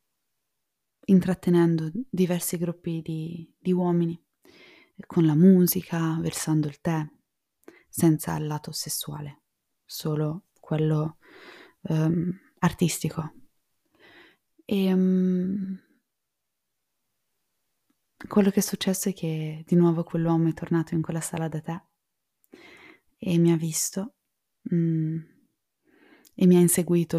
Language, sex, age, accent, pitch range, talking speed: Italian, female, 20-39, native, 160-180 Hz, 105 wpm